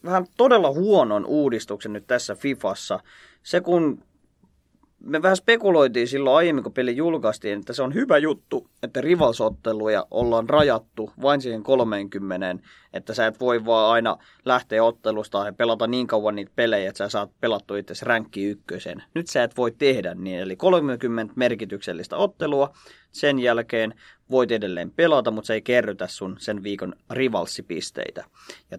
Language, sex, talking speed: Finnish, male, 155 wpm